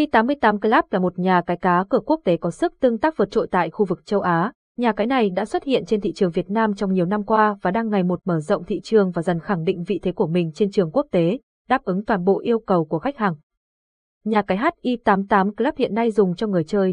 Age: 20-39